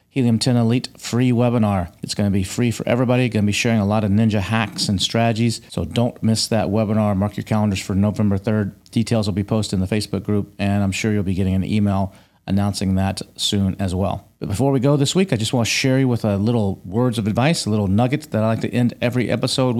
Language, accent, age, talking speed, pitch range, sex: English, American, 40-59, 250 wpm, 100-125 Hz, male